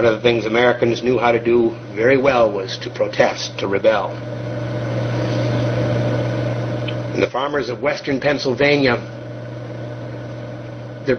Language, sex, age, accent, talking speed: English, male, 60-79, American, 120 wpm